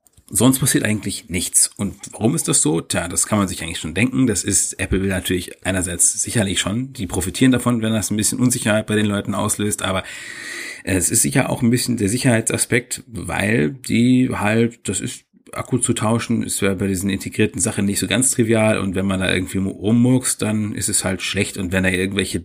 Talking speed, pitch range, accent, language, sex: 210 wpm, 95-120 Hz, German, German, male